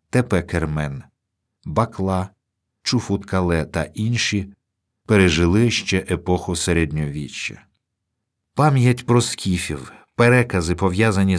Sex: male